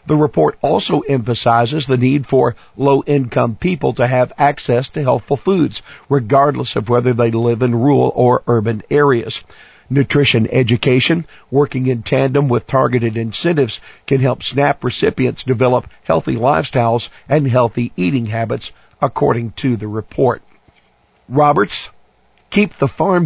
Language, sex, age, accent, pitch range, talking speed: English, male, 50-69, American, 120-145 Hz, 135 wpm